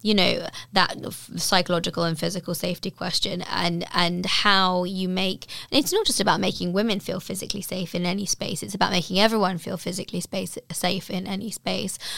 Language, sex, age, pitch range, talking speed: English, female, 20-39, 180-200 Hz, 175 wpm